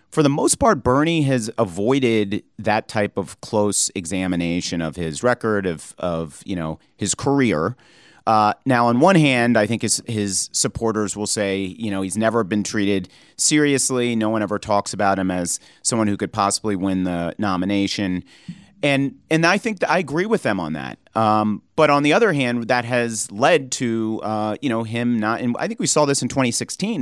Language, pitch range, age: English, 100-135 Hz, 40-59